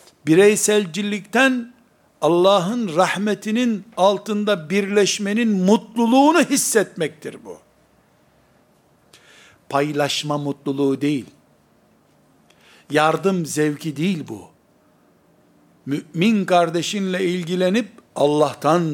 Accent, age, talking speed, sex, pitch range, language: native, 60-79, 65 wpm, male, 140-200 Hz, Turkish